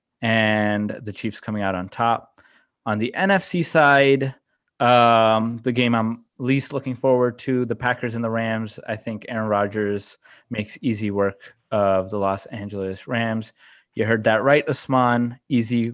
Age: 20-39